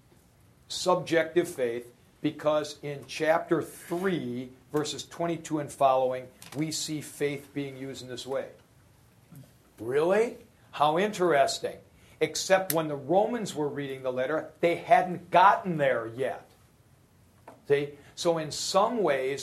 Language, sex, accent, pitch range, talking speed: English, male, American, 140-175 Hz, 120 wpm